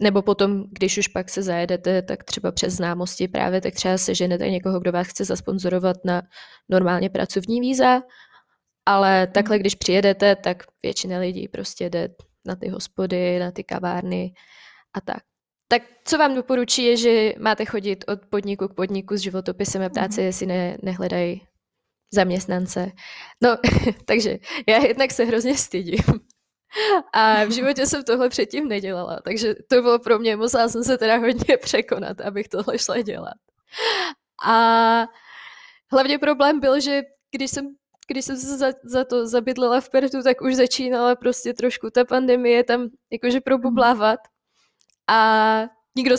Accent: native